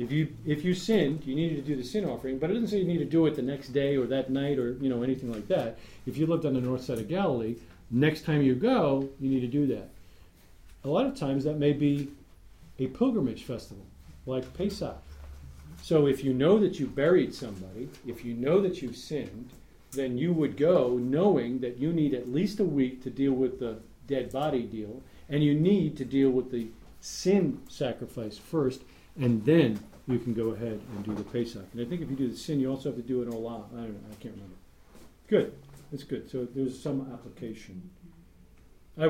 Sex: male